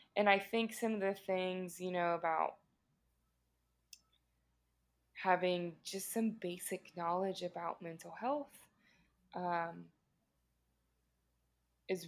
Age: 20-39